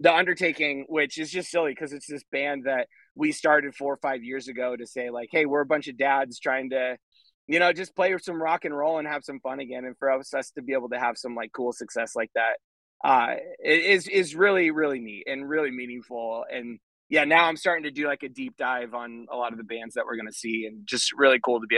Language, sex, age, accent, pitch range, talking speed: English, male, 20-39, American, 115-150 Hz, 255 wpm